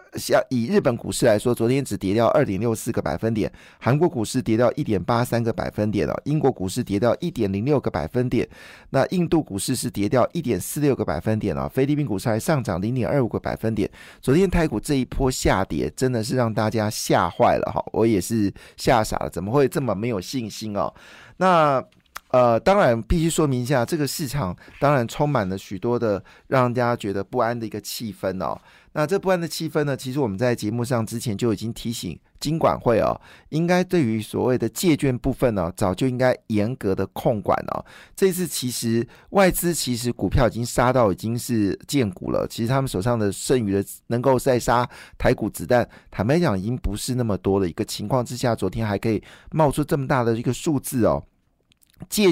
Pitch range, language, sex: 105-135 Hz, Chinese, male